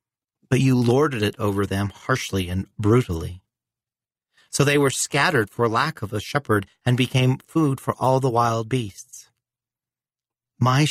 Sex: male